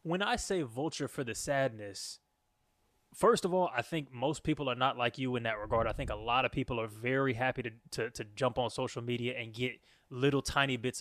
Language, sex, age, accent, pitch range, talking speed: English, male, 20-39, American, 115-135 Hz, 230 wpm